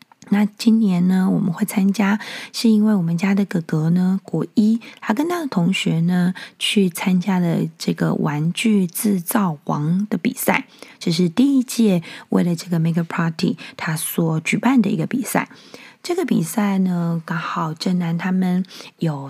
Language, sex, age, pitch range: Chinese, female, 20-39, 170-225 Hz